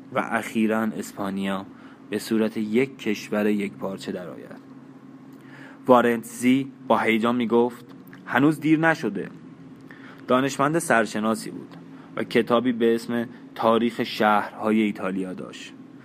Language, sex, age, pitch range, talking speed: Persian, male, 20-39, 105-120 Hz, 110 wpm